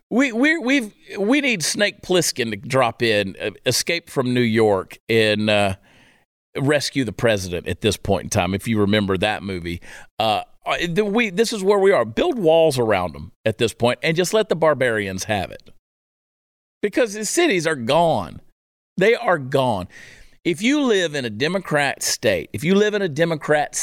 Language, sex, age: English, male, 50-69